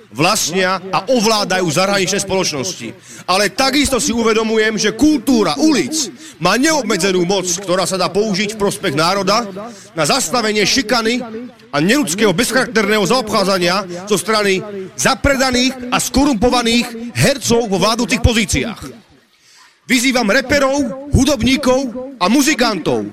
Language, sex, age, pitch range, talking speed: English, male, 40-59, 195-250 Hz, 115 wpm